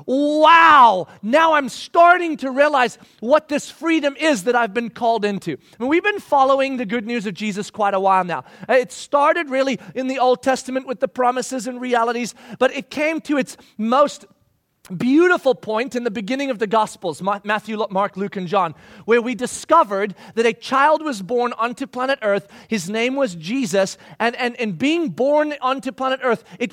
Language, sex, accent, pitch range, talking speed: English, male, American, 220-280 Hz, 185 wpm